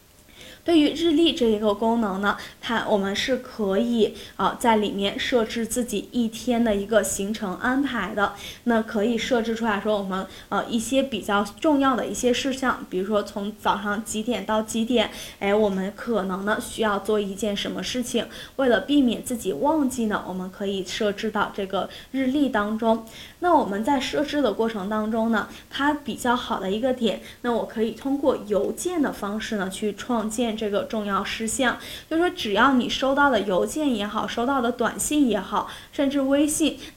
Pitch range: 210-255 Hz